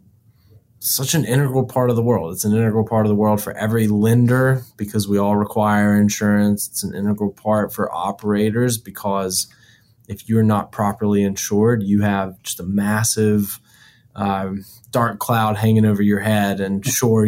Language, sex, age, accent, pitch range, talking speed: English, male, 20-39, American, 100-115 Hz, 165 wpm